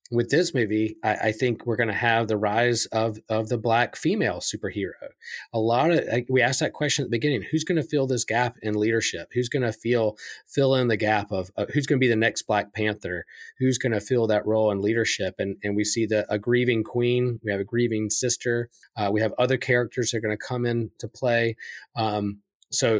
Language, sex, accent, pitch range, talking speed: English, male, American, 105-125 Hz, 235 wpm